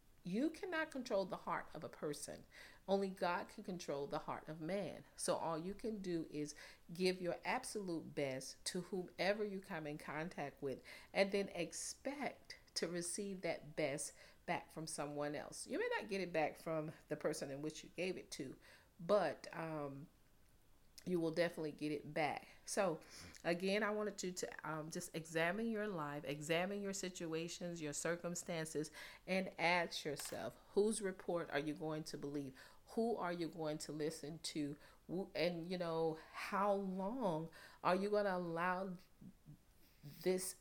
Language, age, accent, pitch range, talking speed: English, 40-59, American, 155-195 Hz, 165 wpm